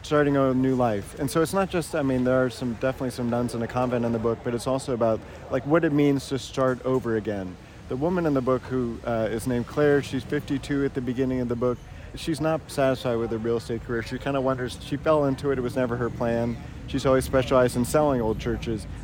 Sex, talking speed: male, 255 wpm